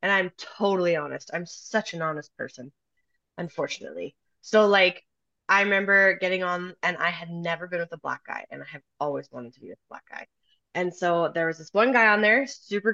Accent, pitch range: American, 170-225 Hz